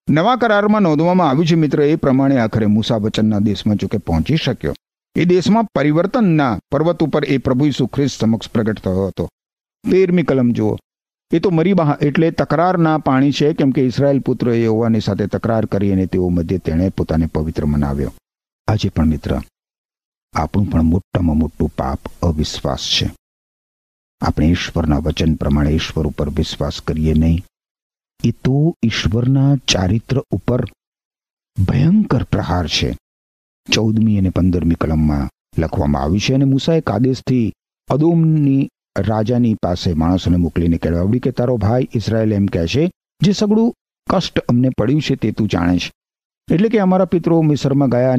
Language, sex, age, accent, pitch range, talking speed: Gujarati, male, 50-69, native, 90-140 Hz, 145 wpm